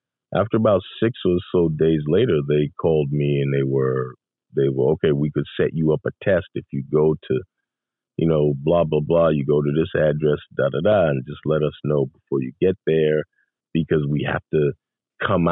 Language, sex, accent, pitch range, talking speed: English, male, American, 75-110 Hz, 210 wpm